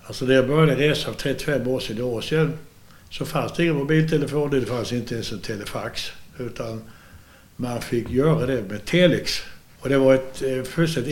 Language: Swedish